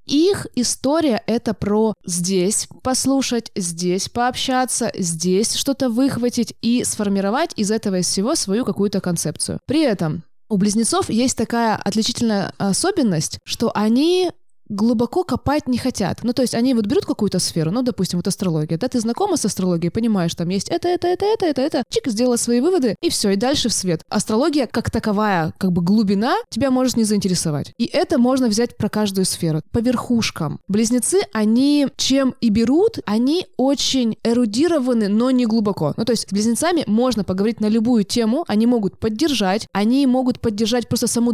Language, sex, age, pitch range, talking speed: Russian, female, 20-39, 190-250 Hz, 170 wpm